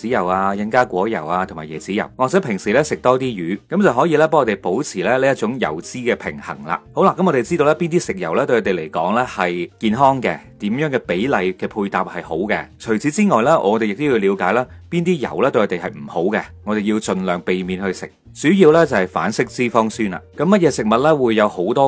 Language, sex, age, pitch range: Chinese, male, 30-49, 95-140 Hz